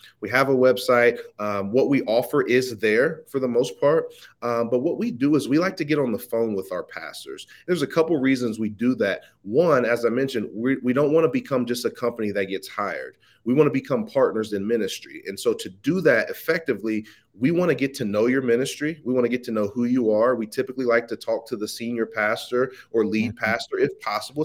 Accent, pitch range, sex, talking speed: American, 115-135 Hz, male, 240 wpm